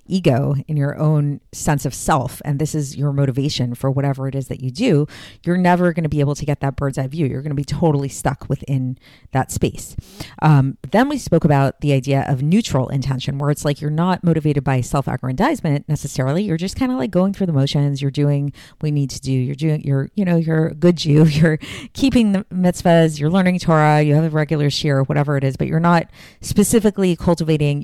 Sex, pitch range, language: female, 140-170 Hz, English